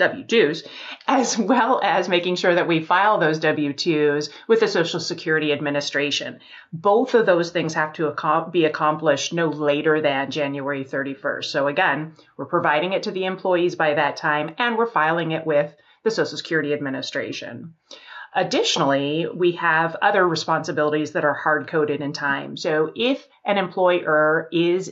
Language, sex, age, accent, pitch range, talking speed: English, female, 30-49, American, 155-190 Hz, 155 wpm